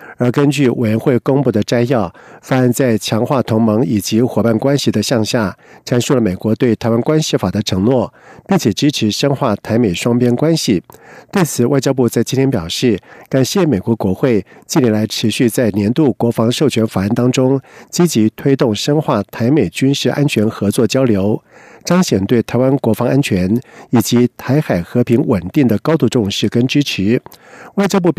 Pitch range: 110-140 Hz